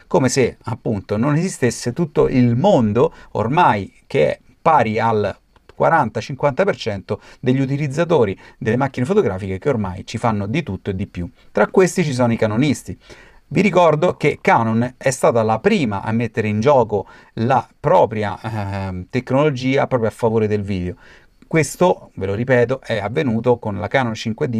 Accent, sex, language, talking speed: native, male, Italian, 160 wpm